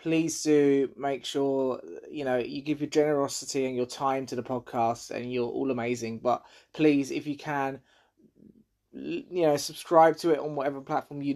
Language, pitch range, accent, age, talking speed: English, 130-150 Hz, British, 20-39, 180 wpm